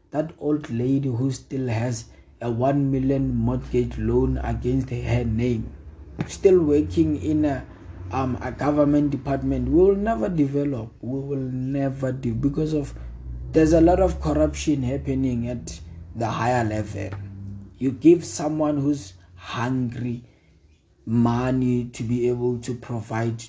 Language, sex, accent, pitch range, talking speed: English, male, South African, 110-140 Hz, 135 wpm